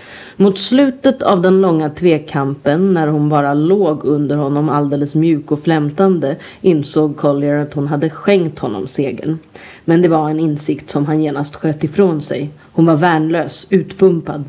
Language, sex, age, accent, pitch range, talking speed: Swedish, female, 30-49, native, 150-180 Hz, 160 wpm